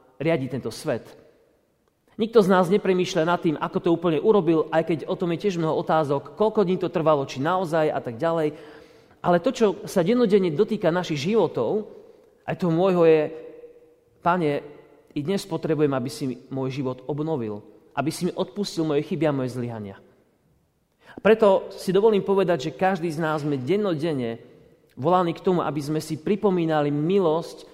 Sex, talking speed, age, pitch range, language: male, 170 wpm, 30-49, 145-190 Hz, Slovak